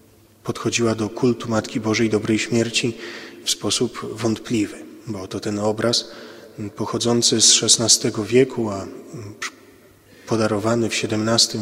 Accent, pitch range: native, 105-120 Hz